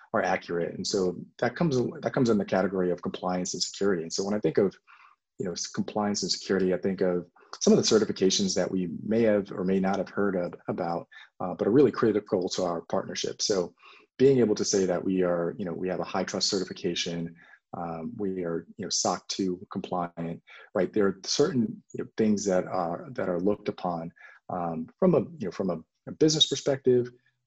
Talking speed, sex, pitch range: 215 wpm, male, 90-105 Hz